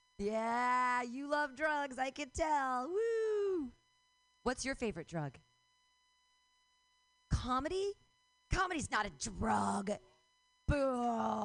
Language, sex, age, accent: English, female, 40-59, American